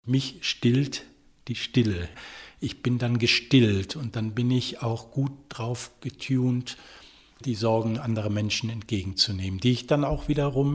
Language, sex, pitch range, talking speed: German, male, 115-135 Hz, 145 wpm